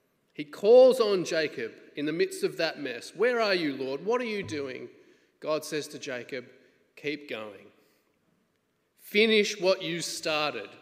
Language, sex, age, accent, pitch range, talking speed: English, male, 30-49, Australian, 150-235 Hz, 155 wpm